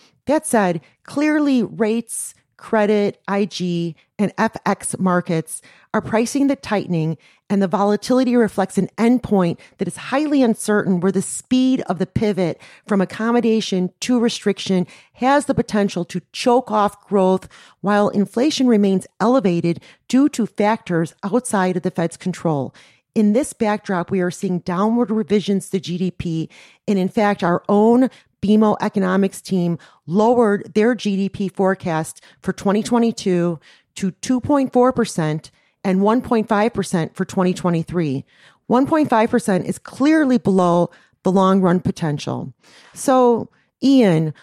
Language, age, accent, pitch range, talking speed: English, 40-59, American, 185-235 Hz, 125 wpm